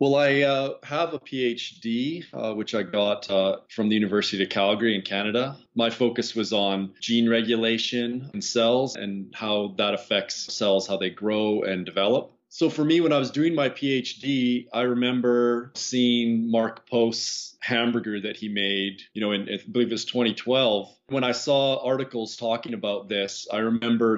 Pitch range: 100-125 Hz